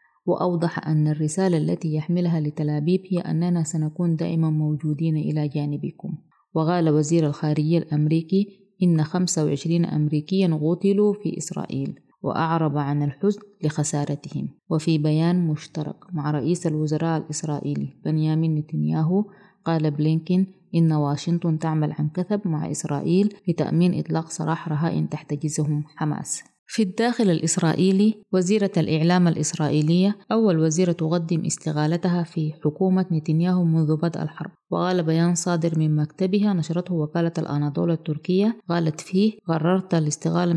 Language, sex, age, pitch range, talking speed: Arabic, female, 20-39, 155-180 Hz, 120 wpm